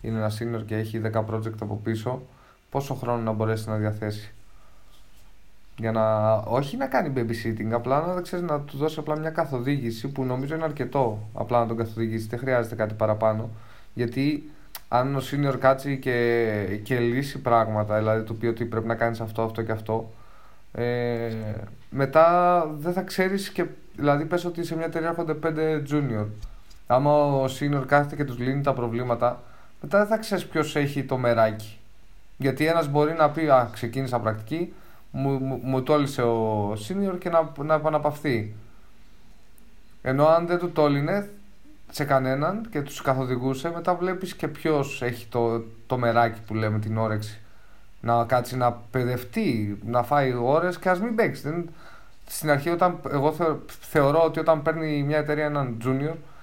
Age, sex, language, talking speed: 20-39, male, Greek, 170 wpm